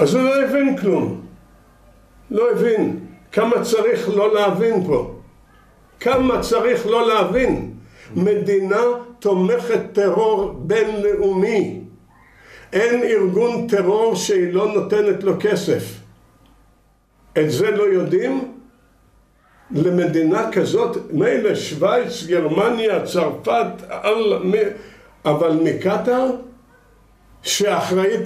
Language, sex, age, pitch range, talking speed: Hebrew, male, 60-79, 175-230 Hz, 90 wpm